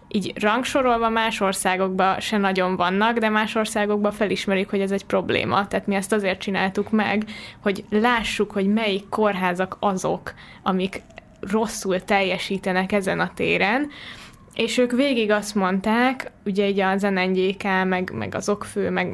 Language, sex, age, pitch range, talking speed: Hungarian, female, 10-29, 190-215 Hz, 145 wpm